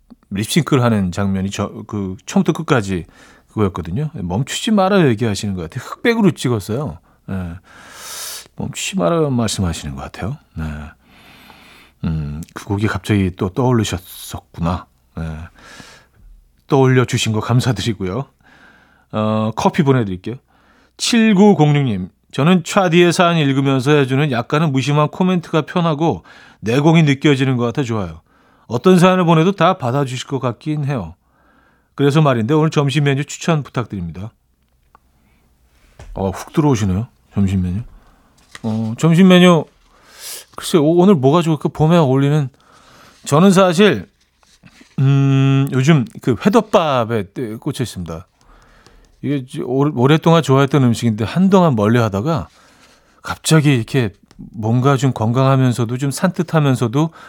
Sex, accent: male, native